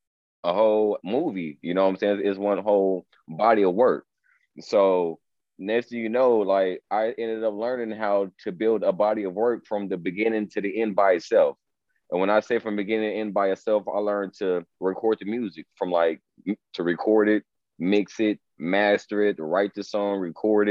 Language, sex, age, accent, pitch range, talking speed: English, male, 30-49, American, 100-115 Hz, 195 wpm